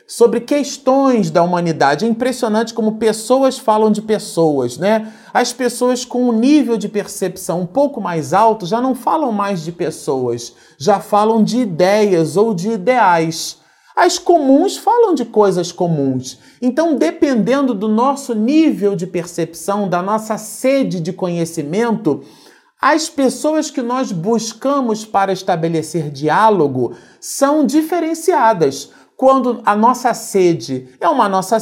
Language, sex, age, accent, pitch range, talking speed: Portuguese, male, 40-59, Brazilian, 180-250 Hz, 135 wpm